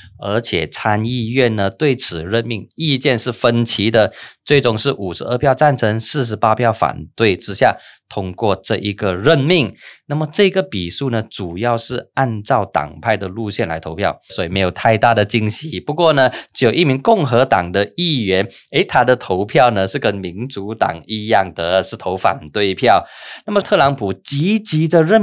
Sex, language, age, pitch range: male, Chinese, 20-39, 105-145 Hz